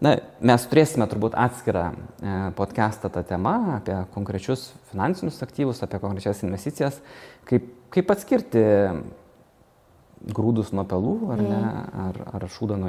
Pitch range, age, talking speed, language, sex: 100-130 Hz, 20-39, 125 wpm, English, male